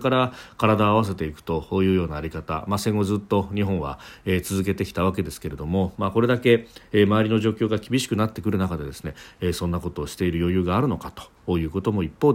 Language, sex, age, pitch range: Japanese, male, 40-59, 90-115 Hz